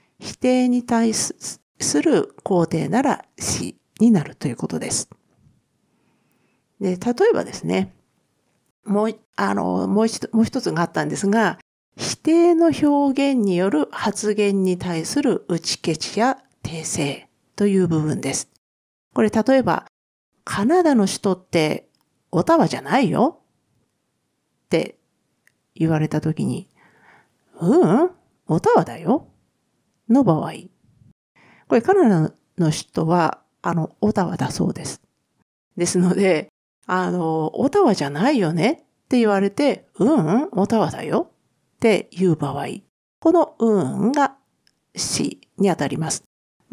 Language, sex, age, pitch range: Japanese, female, 50-69, 165-240 Hz